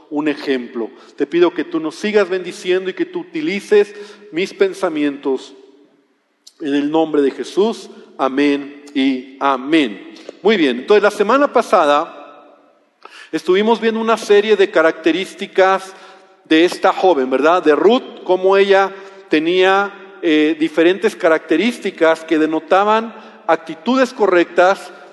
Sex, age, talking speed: male, 40-59, 120 wpm